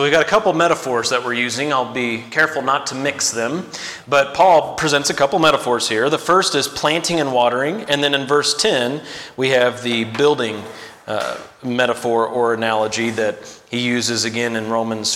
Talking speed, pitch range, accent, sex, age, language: 200 wpm, 125-160 Hz, American, male, 30-49, English